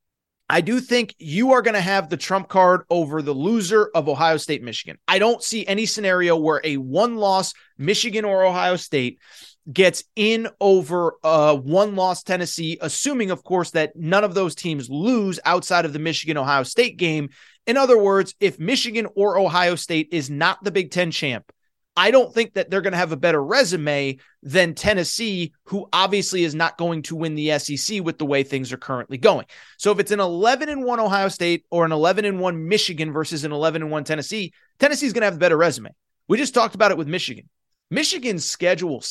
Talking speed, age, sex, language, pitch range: 190 wpm, 30-49, male, English, 155-205 Hz